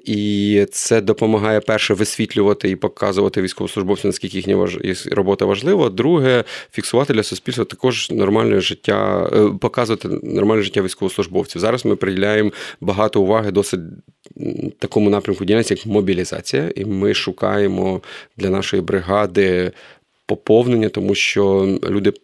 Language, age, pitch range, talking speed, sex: Ukrainian, 30-49, 95-110 Hz, 120 wpm, male